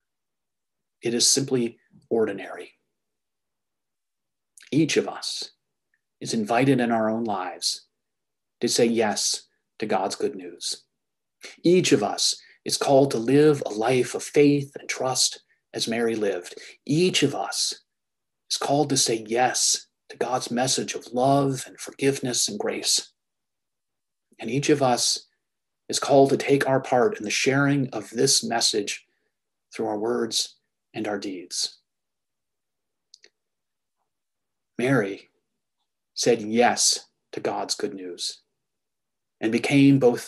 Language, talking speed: English, 125 wpm